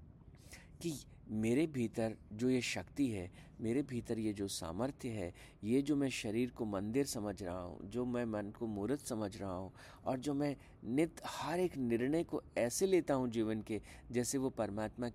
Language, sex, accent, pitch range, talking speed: Hindi, male, native, 95-140 Hz, 180 wpm